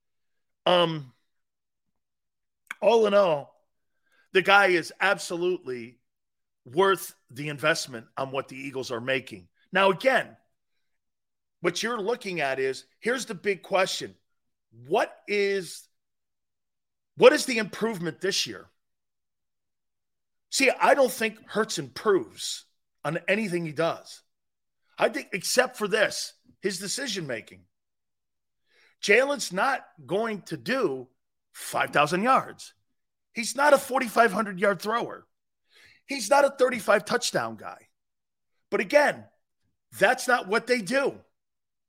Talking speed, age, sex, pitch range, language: 110 wpm, 40-59, male, 155-245 Hz, English